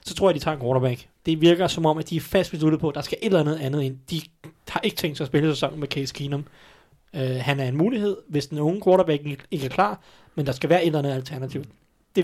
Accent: native